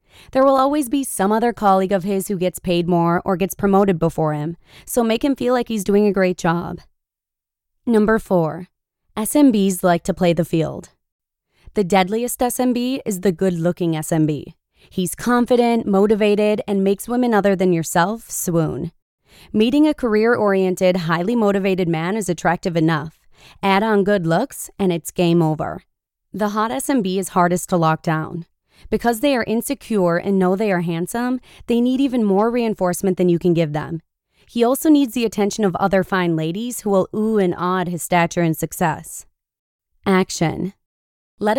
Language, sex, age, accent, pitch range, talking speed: English, female, 20-39, American, 175-230 Hz, 170 wpm